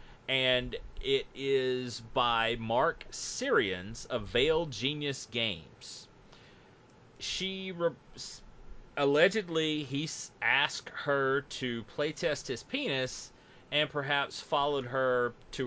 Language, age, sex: English, 30-49, male